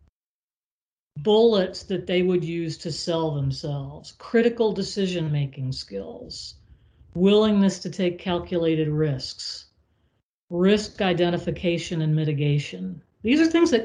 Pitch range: 150-205 Hz